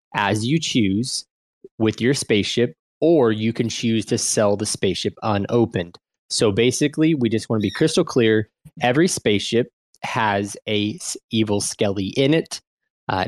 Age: 20-39